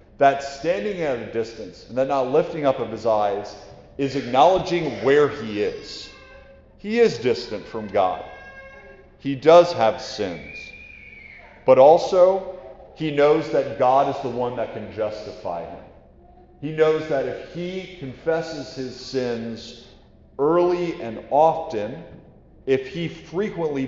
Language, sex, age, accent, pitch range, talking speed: English, male, 40-59, American, 110-135 Hz, 135 wpm